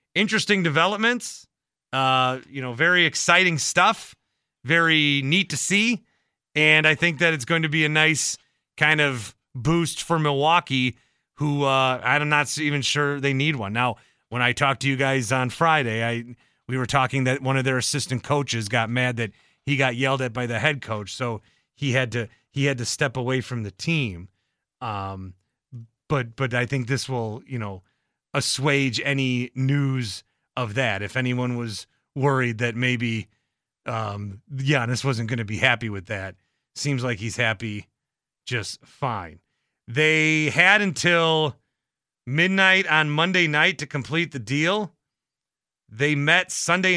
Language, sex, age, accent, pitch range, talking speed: English, male, 30-49, American, 120-155 Hz, 160 wpm